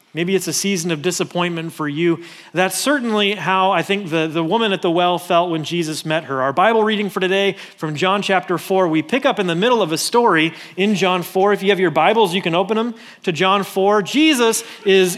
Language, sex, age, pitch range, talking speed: English, male, 30-49, 165-205 Hz, 235 wpm